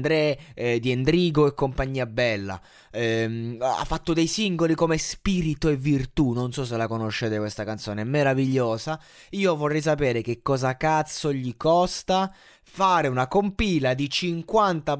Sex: male